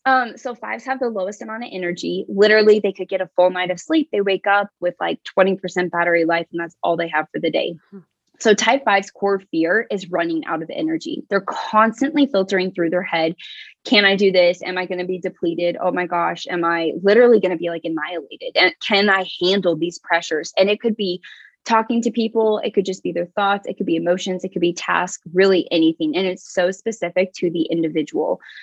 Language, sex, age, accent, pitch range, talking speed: English, female, 20-39, American, 175-210 Hz, 225 wpm